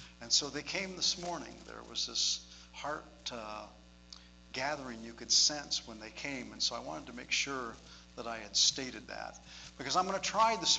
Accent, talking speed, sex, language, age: American, 200 wpm, male, English, 50-69